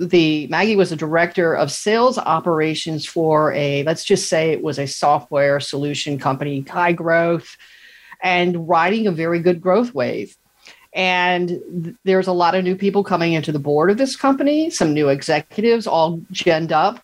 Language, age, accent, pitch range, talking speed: English, 50-69, American, 150-180 Hz, 175 wpm